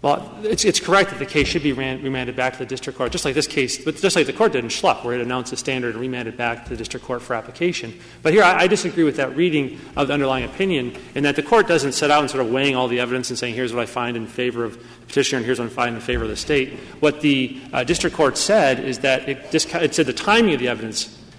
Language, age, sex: English, 30-49, male